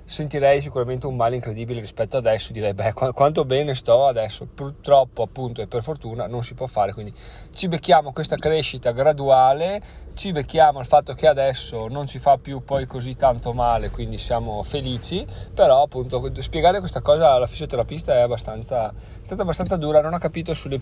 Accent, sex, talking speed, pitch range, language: native, male, 180 wpm, 120-150 Hz, Italian